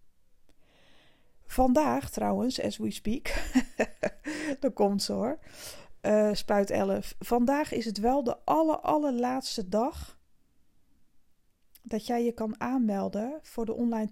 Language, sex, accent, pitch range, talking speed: Dutch, female, Dutch, 210-255 Hz, 120 wpm